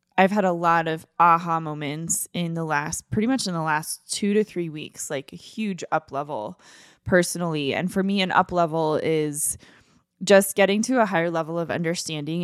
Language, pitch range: English, 160-195 Hz